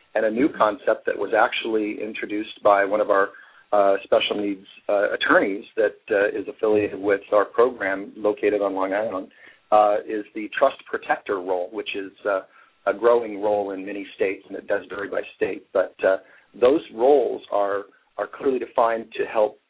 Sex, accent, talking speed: male, American, 180 wpm